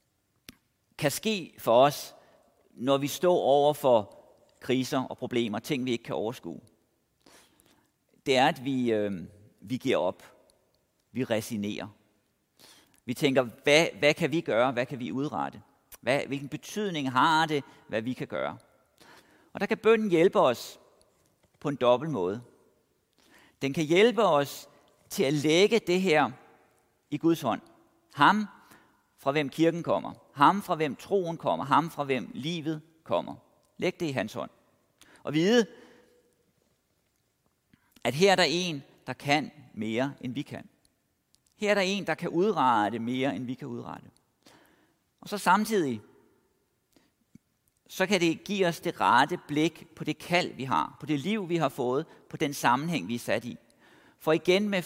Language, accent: Danish, native